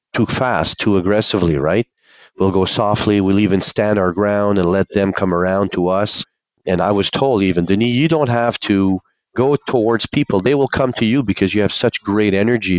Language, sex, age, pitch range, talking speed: English, male, 40-59, 90-115 Hz, 205 wpm